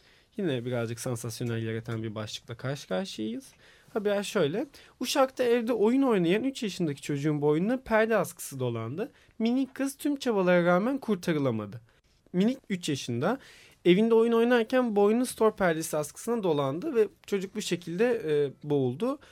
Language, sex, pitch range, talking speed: Turkish, male, 150-215 Hz, 135 wpm